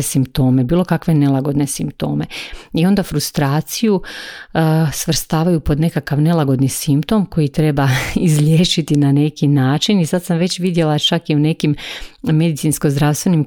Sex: female